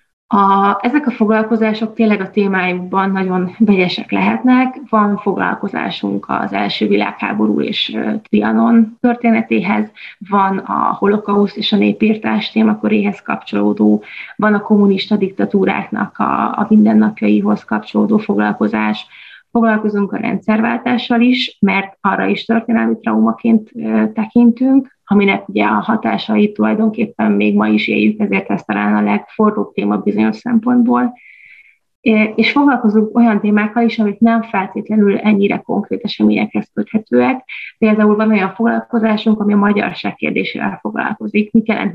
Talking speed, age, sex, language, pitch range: 125 wpm, 20-39, female, Hungarian, 190-230 Hz